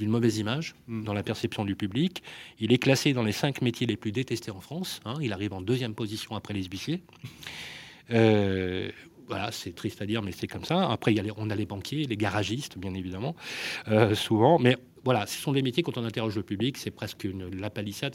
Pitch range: 105-135 Hz